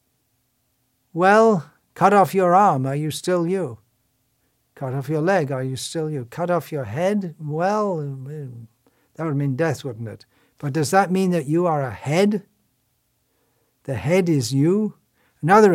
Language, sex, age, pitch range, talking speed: English, male, 60-79, 130-175 Hz, 160 wpm